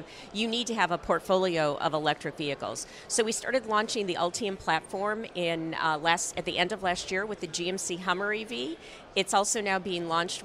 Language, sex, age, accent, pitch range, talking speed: English, female, 50-69, American, 165-210 Hz, 200 wpm